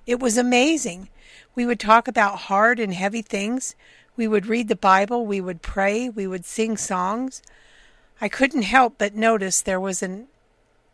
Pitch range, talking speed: 195-240 Hz, 170 wpm